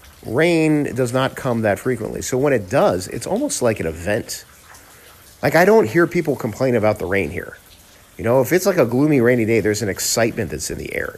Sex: male